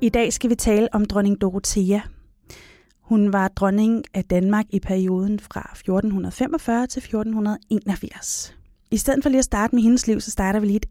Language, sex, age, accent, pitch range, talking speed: Danish, female, 30-49, native, 195-235 Hz, 180 wpm